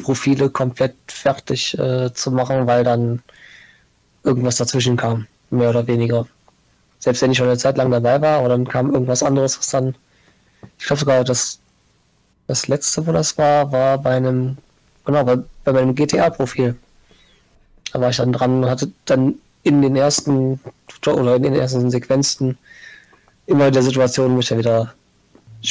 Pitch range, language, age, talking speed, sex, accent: 125-135 Hz, English, 20-39, 165 wpm, male, German